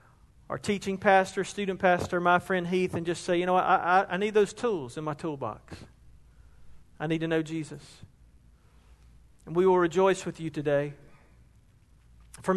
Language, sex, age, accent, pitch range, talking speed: English, male, 40-59, American, 140-180 Hz, 160 wpm